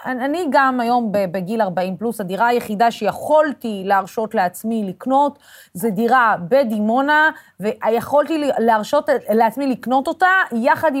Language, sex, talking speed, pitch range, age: Hebrew, female, 115 wpm, 225-320 Hz, 30-49